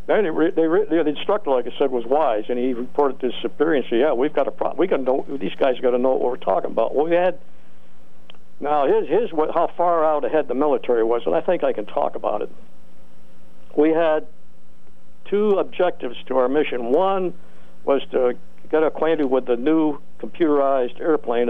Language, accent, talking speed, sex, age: English, American, 210 wpm, male, 60-79